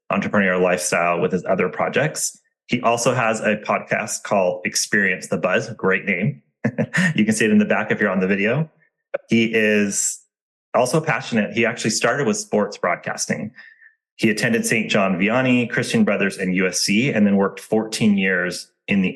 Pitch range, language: 100-135 Hz, English